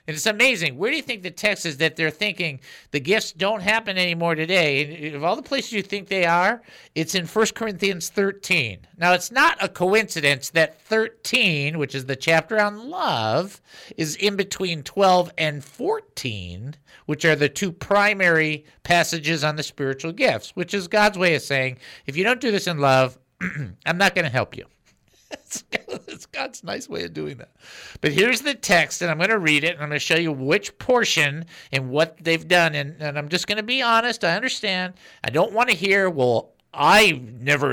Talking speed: 200 wpm